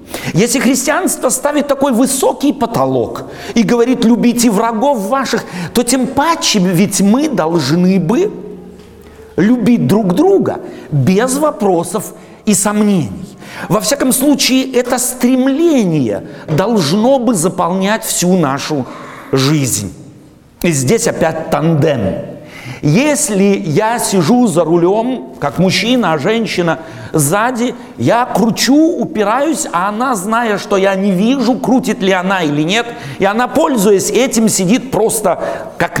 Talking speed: 120 wpm